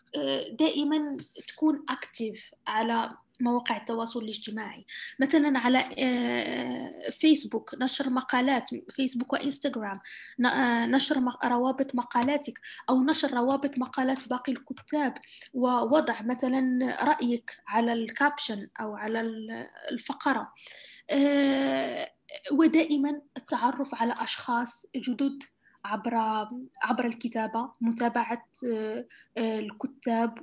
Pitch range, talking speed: 235-275 Hz, 80 wpm